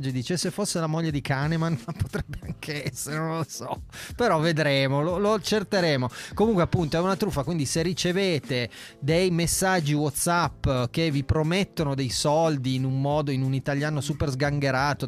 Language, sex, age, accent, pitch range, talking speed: Italian, male, 30-49, native, 130-165 Hz, 165 wpm